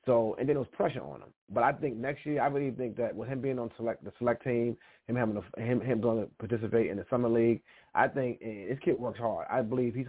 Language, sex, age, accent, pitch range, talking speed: English, male, 30-49, American, 115-135 Hz, 280 wpm